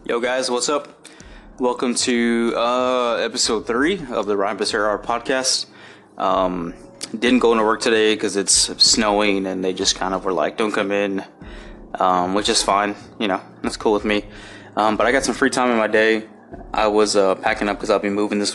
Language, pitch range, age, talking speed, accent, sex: English, 100-125 Hz, 20-39, 205 wpm, American, male